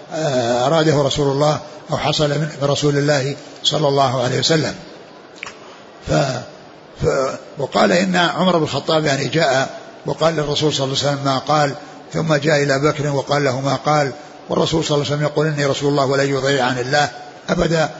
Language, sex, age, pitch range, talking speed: Arabic, male, 60-79, 140-155 Hz, 170 wpm